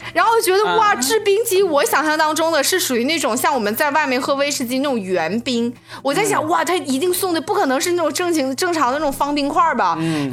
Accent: native